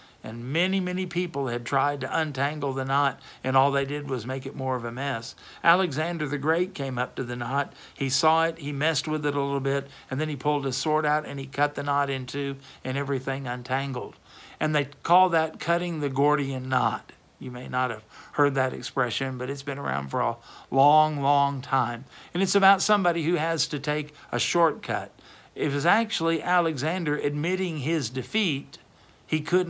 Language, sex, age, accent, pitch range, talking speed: English, male, 60-79, American, 130-165 Hz, 200 wpm